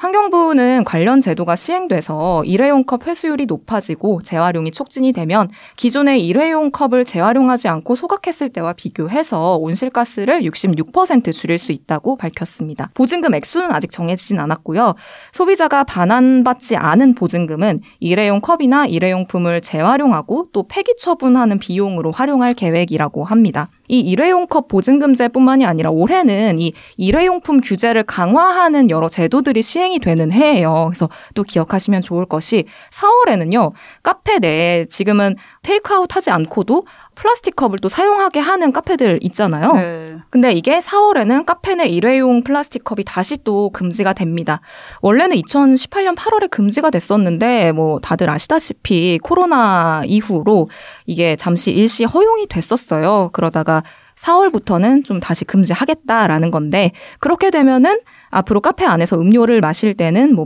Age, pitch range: 20-39, 175-290 Hz